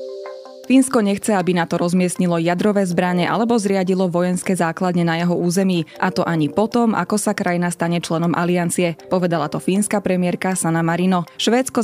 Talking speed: 160 wpm